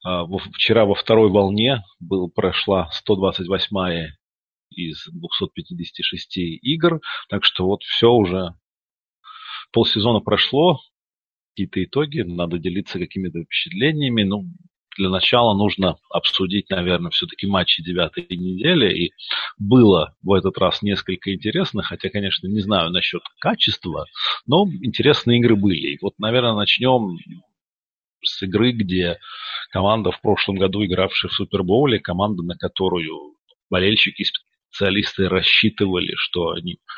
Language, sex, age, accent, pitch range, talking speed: Russian, male, 40-59, native, 95-110 Hz, 120 wpm